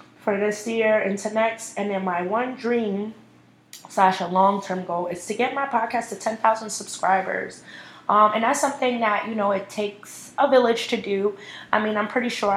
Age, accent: 20-39, American